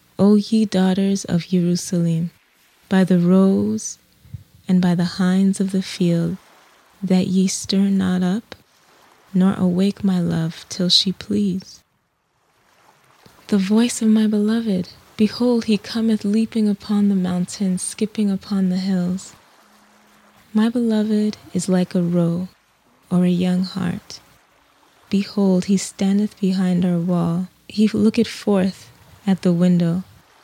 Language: English